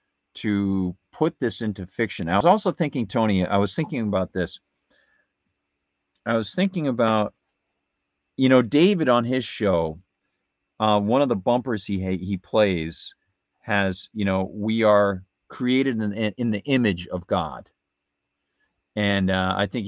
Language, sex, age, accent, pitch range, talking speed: English, male, 50-69, American, 85-105 Hz, 150 wpm